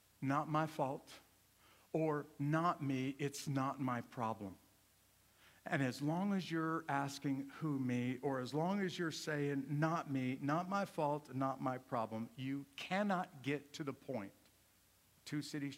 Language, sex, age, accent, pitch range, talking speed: English, male, 50-69, American, 110-145 Hz, 150 wpm